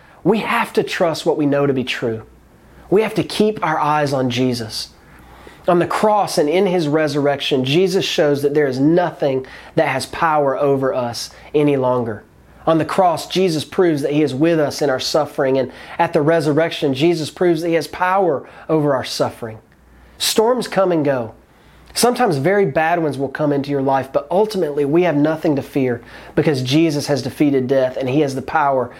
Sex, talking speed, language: male, 195 wpm, English